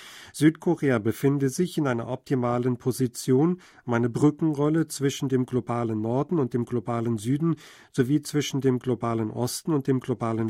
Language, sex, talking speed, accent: German, male, 150 wpm, German